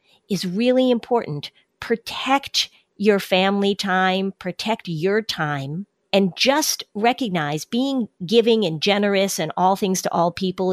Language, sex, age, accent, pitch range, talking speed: English, female, 50-69, American, 180-215 Hz, 130 wpm